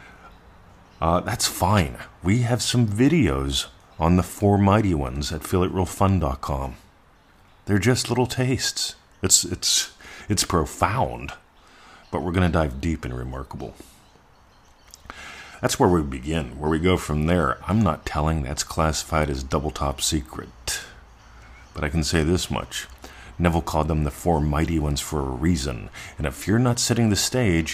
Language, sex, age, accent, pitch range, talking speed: English, male, 40-59, American, 80-100 Hz, 150 wpm